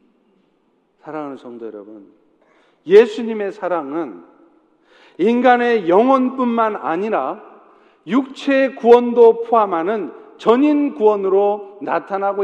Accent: native